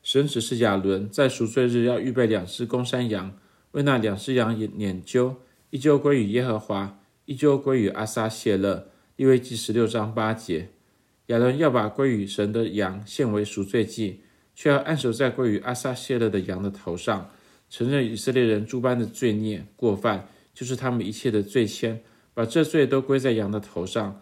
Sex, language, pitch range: male, Chinese, 110-130 Hz